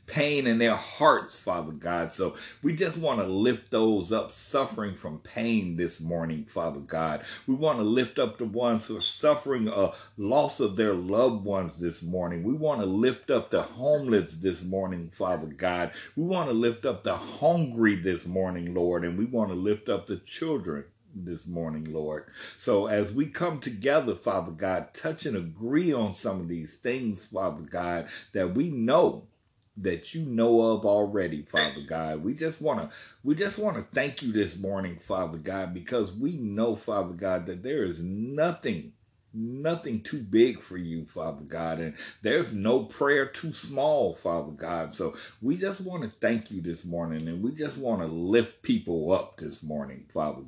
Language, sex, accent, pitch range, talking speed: English, male, American, 85-115 Hz, 180 wpm